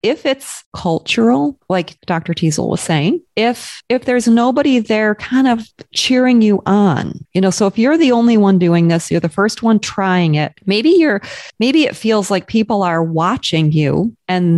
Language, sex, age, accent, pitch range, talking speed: English, female, 30-49, American, 160-210 Hz, 185 wpm